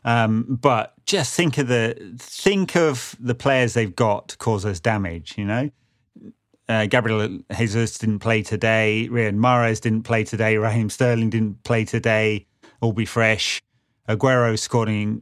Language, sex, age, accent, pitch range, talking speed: English, male, 30-49, British, 105-125 Hz, 155 wpm